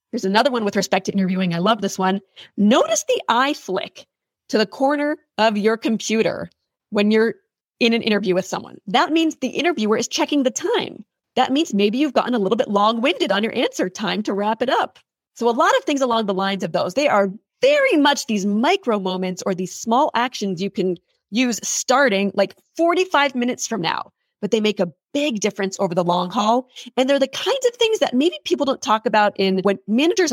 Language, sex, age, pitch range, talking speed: English, female, 30-49, 195-255 Hz, 215 wpm